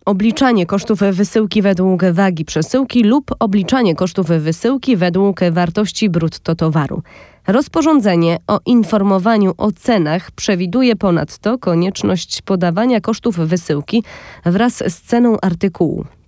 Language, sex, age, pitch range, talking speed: Polish, female, 20-39, 170-225 Hz, 105 wpm